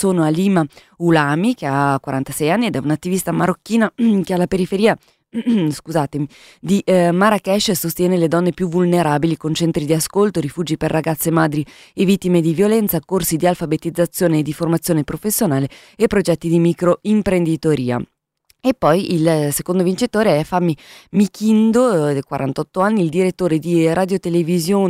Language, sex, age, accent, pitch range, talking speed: Italian, female, 20-39, native, 155-185 Hz, 140 wpm